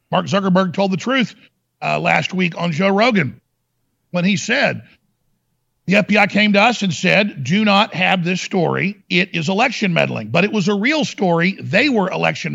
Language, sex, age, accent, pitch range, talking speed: English, male, 50-69, American, 170-205 Hz, 185 wpm